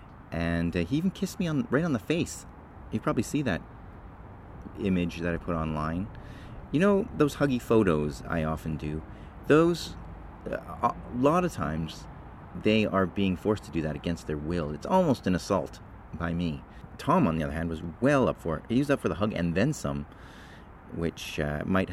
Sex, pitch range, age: male, 80-95 Hz, 30-49